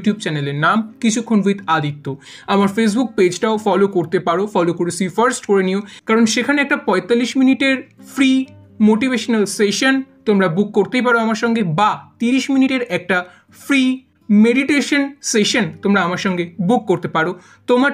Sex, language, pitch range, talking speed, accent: male, Bengali, 175-245 Hz, 145 wpm, native